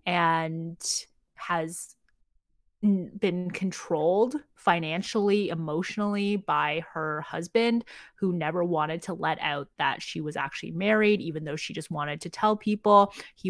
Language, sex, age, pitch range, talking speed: English, female, 20-39, 160-205 Hz, 130 wpm